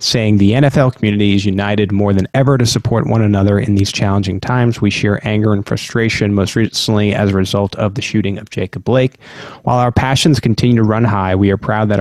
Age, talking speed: 30-49, 220 wpm